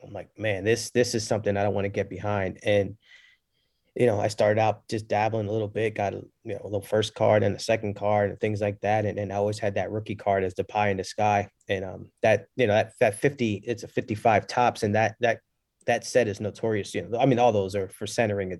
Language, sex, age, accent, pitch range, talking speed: English, male, 20-39, American, 100-115 Hz, 270 wpm